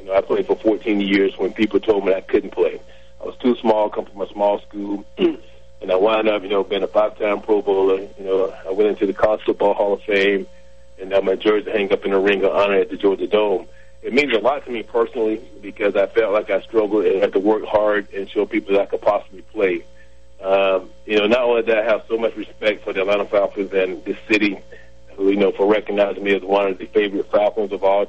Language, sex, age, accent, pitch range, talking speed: English, male, 40-59, American, 95-105 Hz, 250 wpm